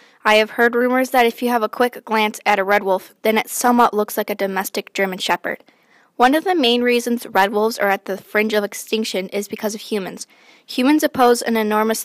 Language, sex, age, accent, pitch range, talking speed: English, female, 10-29, American, 205-245 Hz, 225 wpm